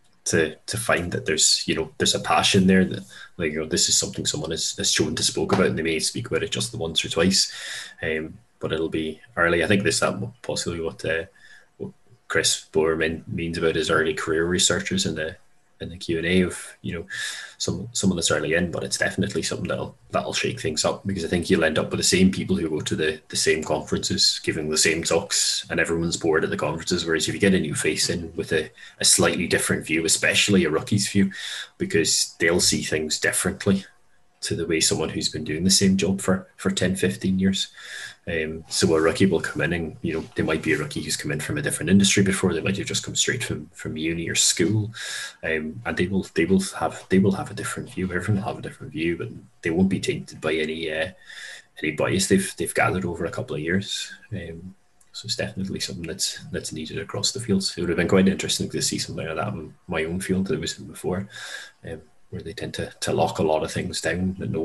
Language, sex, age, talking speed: English, male, 20-39, 245 wpm